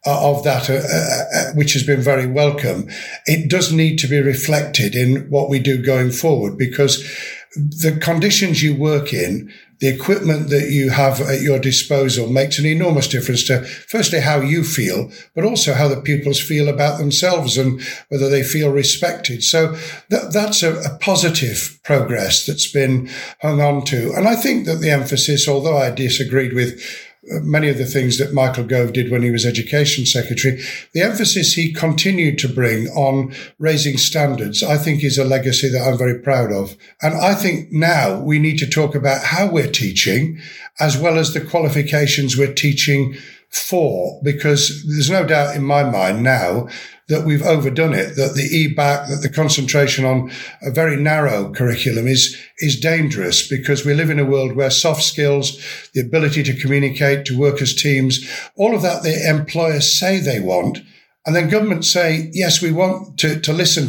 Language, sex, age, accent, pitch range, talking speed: English, male, 60-79, British, 135-155 Hz, 180 wpm